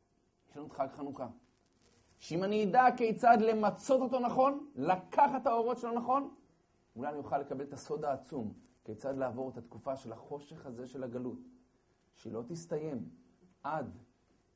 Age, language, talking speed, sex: 30-49, Hebrew, 145 wpm, male